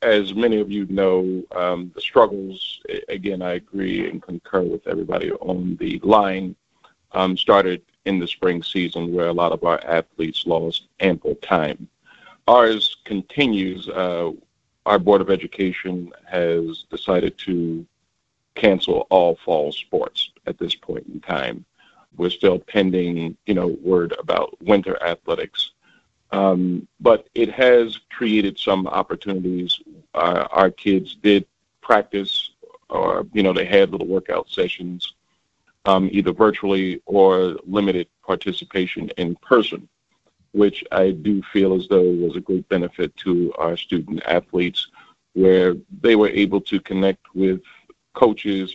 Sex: male